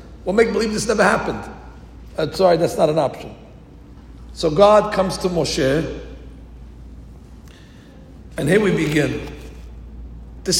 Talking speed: 125 wpm